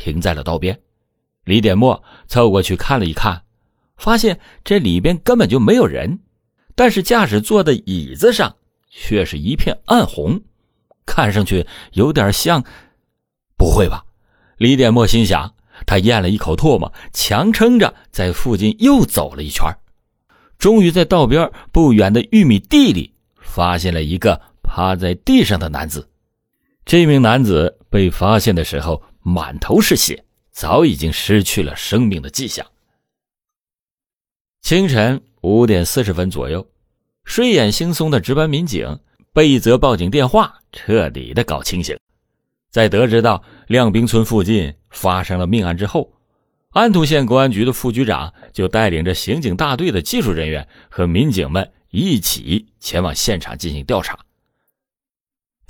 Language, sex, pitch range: Chinese, male, 90-135 Hz